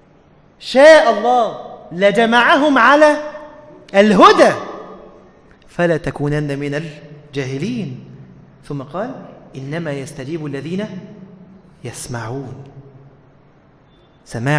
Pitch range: 150-215 Hz